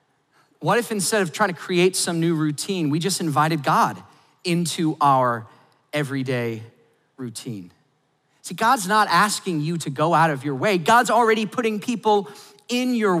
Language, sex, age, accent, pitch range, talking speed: English, male, 40-59, American, 135-175 Hz, 160 wpm